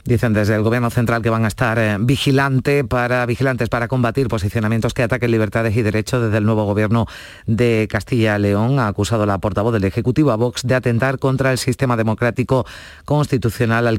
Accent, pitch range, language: Spanish, 105-125 Hz, Spanish